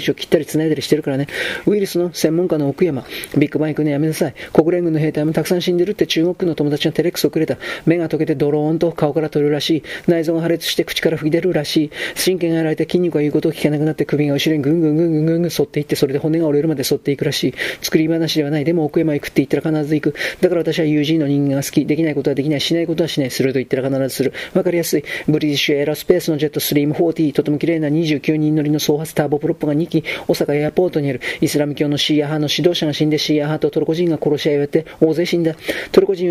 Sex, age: male, 40-59